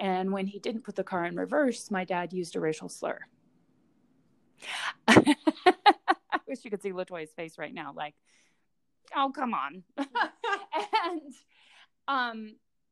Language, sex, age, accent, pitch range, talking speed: English, female, 30-49, American, 185-250 Hz, 140 wpm